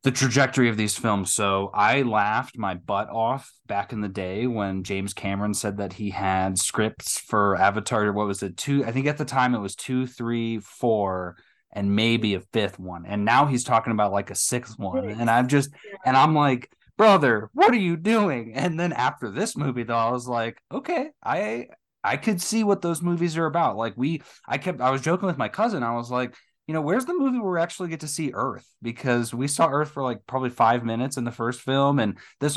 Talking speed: 225 wpm